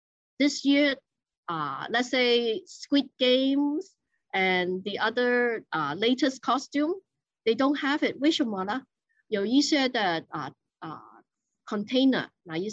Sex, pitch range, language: female, 200-285 Hz, Chinese